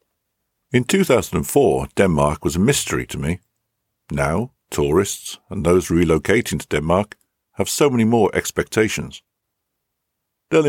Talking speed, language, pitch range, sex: 120 wpm, English, 75-105 Hz, male